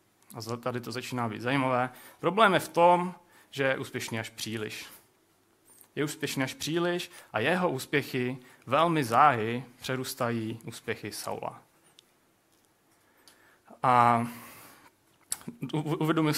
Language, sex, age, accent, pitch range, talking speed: Czech, male, 30-49, native, 120-155 Hz, 105 wpm